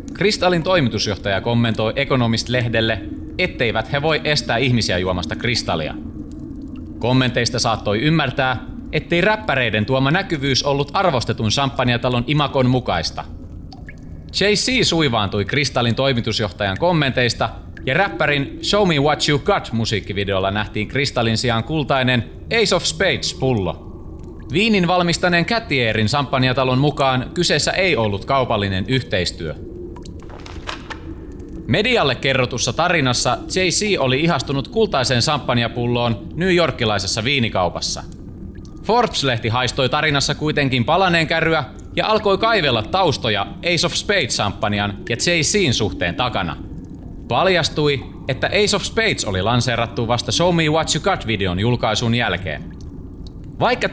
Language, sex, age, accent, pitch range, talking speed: Finnish, male, 30-49, native, 110-155 Hz, 110 wpm